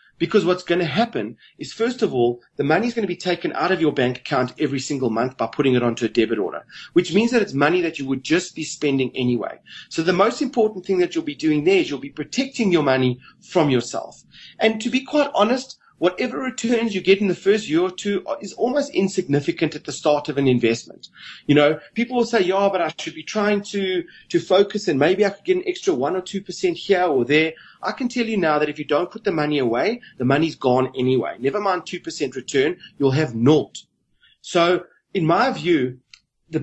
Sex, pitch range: male, 145-205 Hz